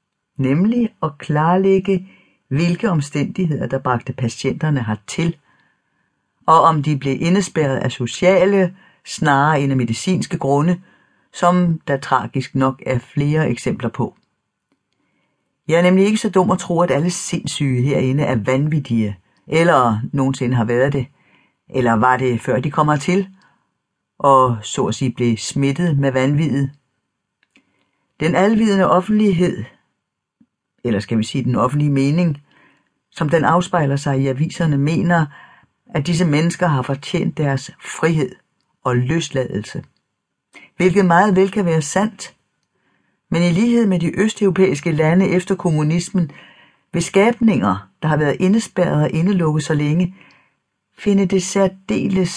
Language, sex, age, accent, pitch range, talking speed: Danish, female, 60-79, native, 135-180 Hz, 135 wpm